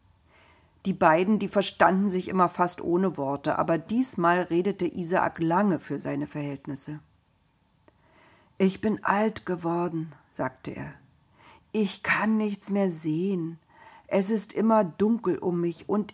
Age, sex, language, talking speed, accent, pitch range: 50-69, female, German, 130 wpm, German, 160-210 Hz